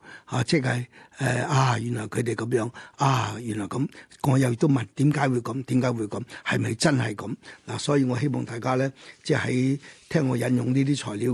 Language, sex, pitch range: Chinese, male, 120-145 Hz